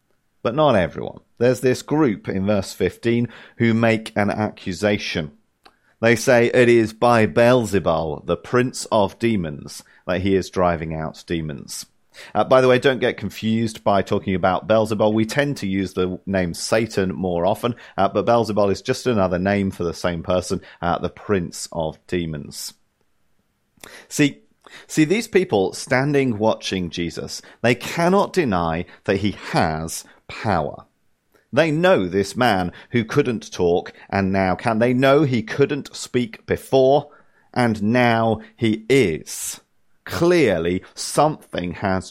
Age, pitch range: 40-59, 90-125 Hz